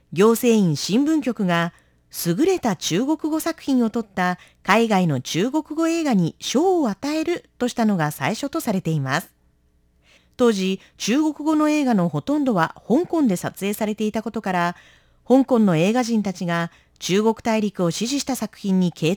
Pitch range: 170-275 Hz